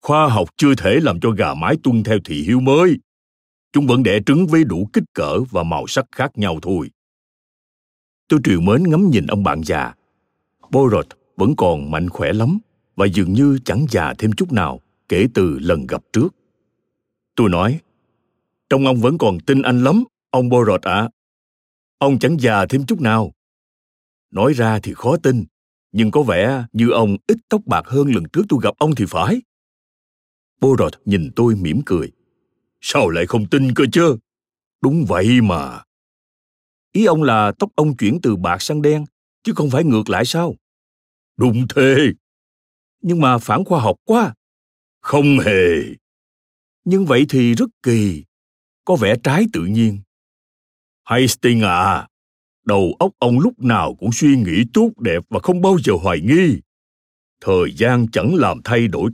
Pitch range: 100-145 Hz